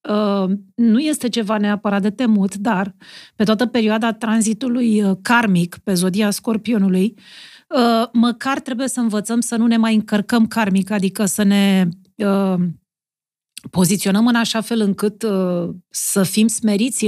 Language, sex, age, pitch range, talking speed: Romanian, female, 40-59, 190-230 Hz, 125 wpm